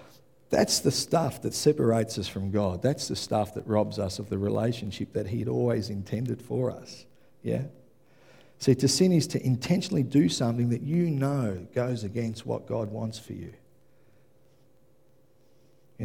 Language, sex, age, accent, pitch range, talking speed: English, male, 50-69, Australian, 115-145 Hz, 160 wpm